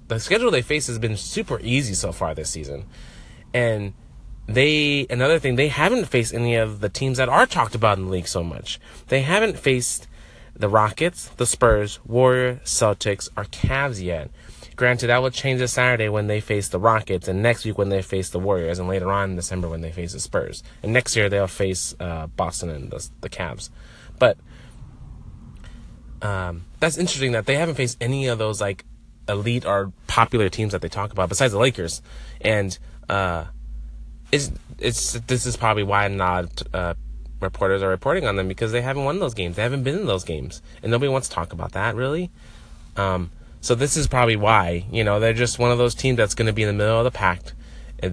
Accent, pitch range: American, 95-120 Hz